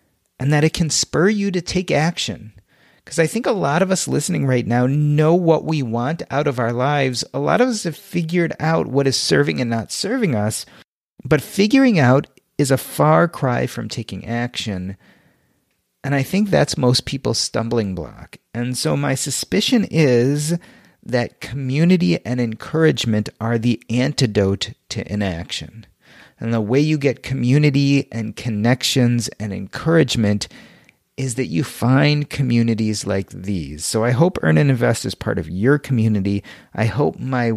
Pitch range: 110-145 Hz